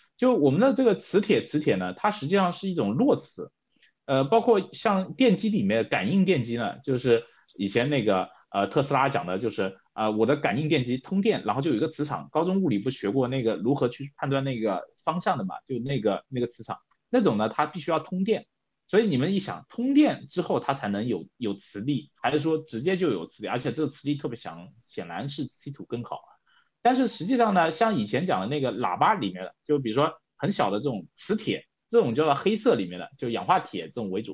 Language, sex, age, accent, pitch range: Chinese, male, 30-49, native, 130-215 Hz